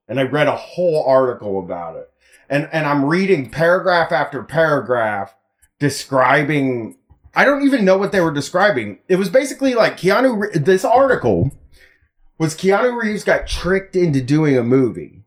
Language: English